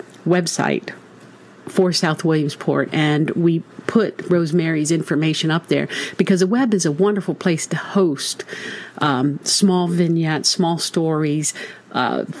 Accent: American